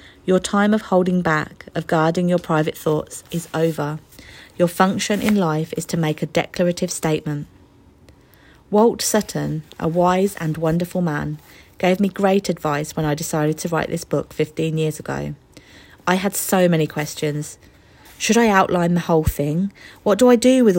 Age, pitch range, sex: 40-59, 150-185 Hz, female